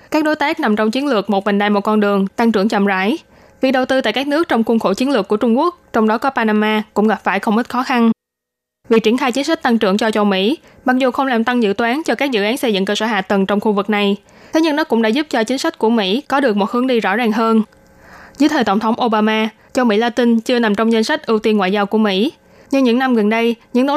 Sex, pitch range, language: female, 210-255 Hz, Vietnamese